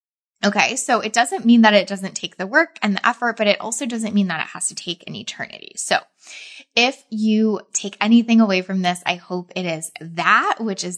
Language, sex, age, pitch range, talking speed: English, female, 20-39, 185-235 Hz, 225 wpm